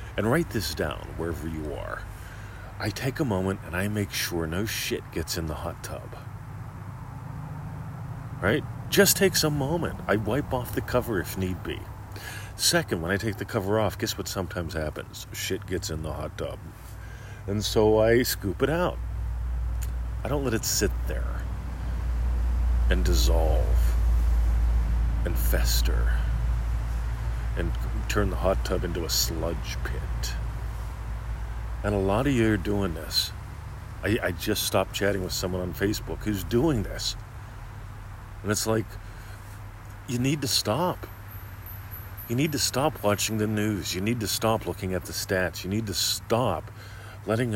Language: English